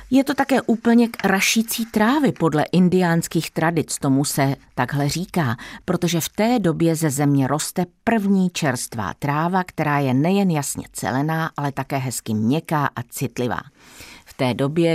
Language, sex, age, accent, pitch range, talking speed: Czech, female, 50-69, native, 135-185 Hz, 155 wpm